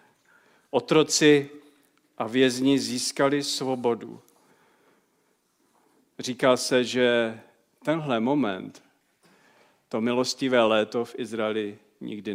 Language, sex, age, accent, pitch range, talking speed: Czech, male, 50-69, native, 110-140 Hz, 80 wpm